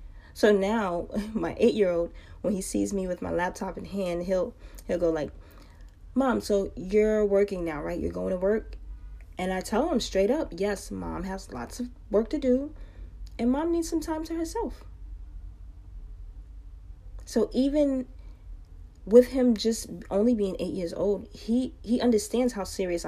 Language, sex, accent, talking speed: English, female, American, 165 wpm